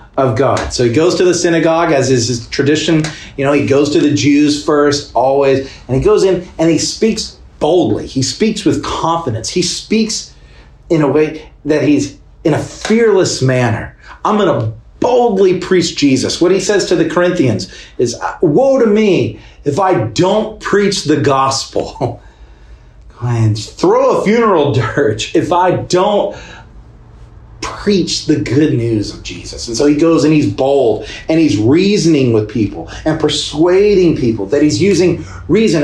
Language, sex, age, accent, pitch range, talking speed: English, male, 40-59, American, 125-185 Hz, 165 wpm